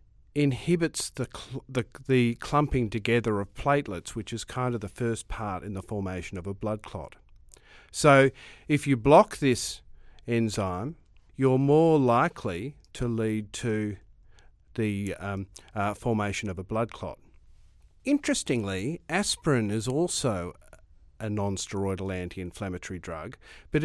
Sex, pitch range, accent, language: male, 95-130 Hz, Australian, English